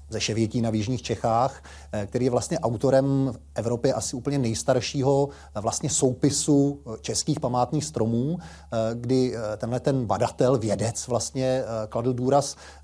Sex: male